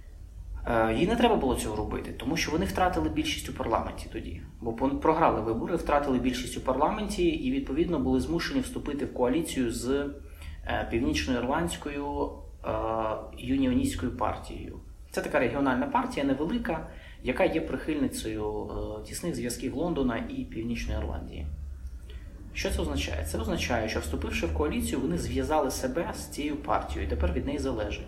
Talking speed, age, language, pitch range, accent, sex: 145 wpm, 20-39, Ukrainian, 80-135 Hz, native, male